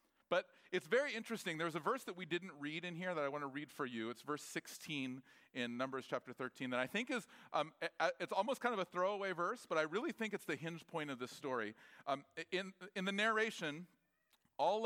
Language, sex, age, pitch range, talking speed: English, male, 40-59, 145-200 Hz, 225 wpm